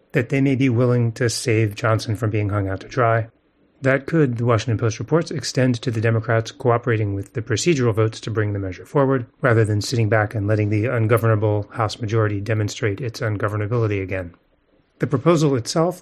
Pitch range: 110-135 Hz